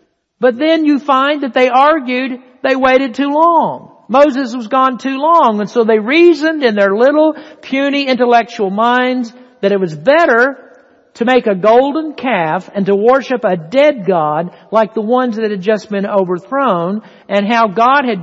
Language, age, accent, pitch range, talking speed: English, 60-79, American, 195-265 Hz, 175 wpm